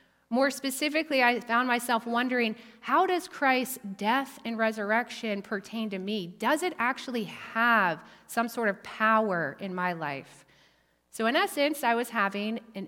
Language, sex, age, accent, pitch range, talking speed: English, female, 30-49, American, 195-250 Hz, 155 wpm